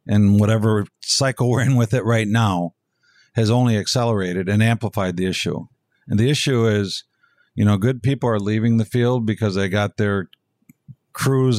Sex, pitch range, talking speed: male, 105-130 Hz, 170 wpm